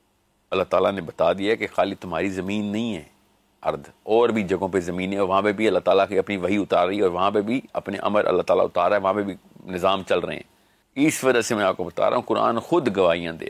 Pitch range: 95-120 Hz